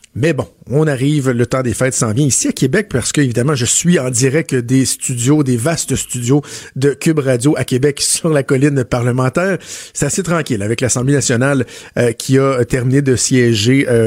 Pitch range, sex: 125-150 Hz, male